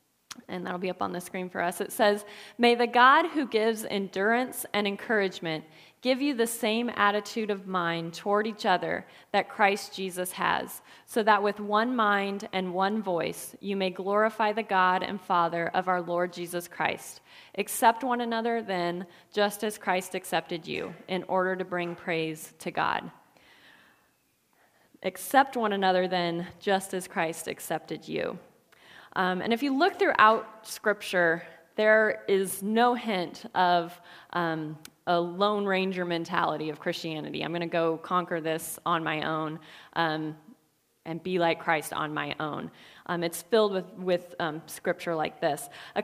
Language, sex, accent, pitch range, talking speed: English, female, American, 175-215 Hz, 160 wpm